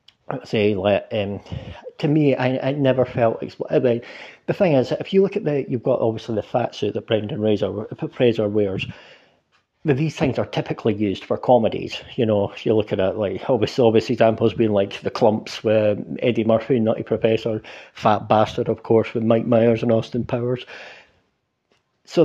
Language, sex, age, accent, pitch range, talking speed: English, male, 40-59, British, 110-145 Hz, 195 wpm